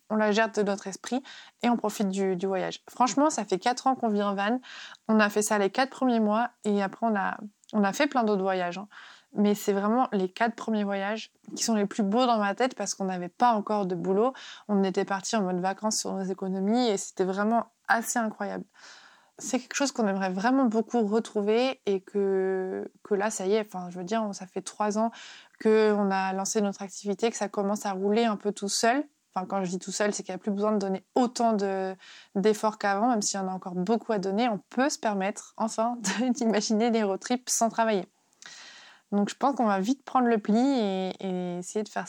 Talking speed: 235 wpm